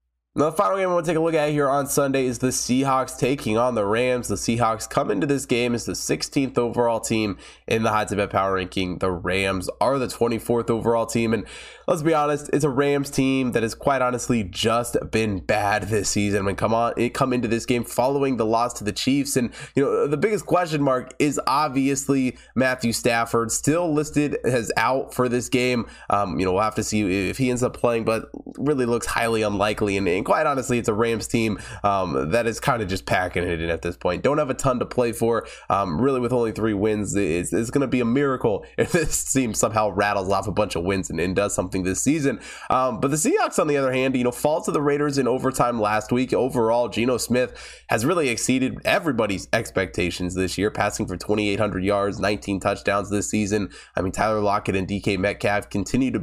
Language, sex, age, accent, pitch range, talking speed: English, male, 20-39, American, 100-130 Hz, 230 wpm